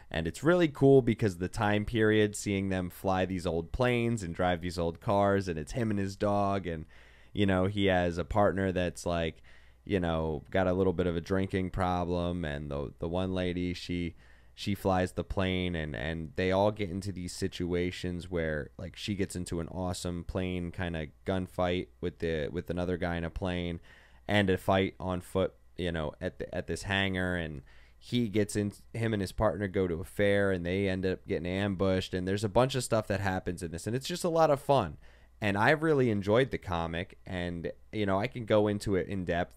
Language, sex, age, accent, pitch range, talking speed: English, male, 20-39, American, 85-105 Hz, 220 wpm